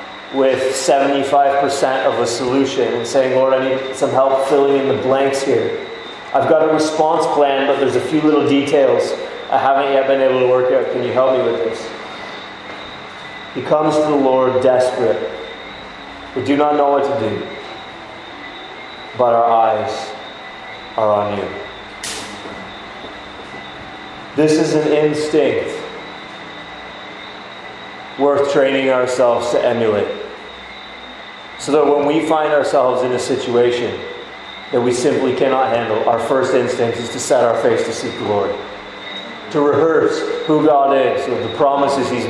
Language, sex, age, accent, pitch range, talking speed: English, male, 30-49, American, 130-150 Hz, 145 wpm